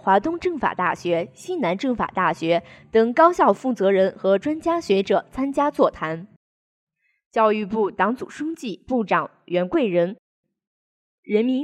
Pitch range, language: 190-280 Hz, Chinese